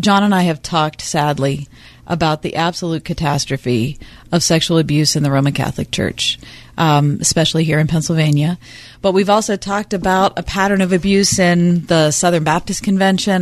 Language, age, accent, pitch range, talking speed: English, 40-59, American, 155-195 Hz, 165 wpm